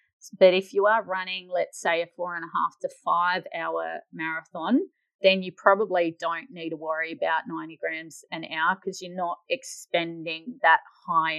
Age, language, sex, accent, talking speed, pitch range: 30-49, English, female, Australian, 180 wpm, 165-215 Hz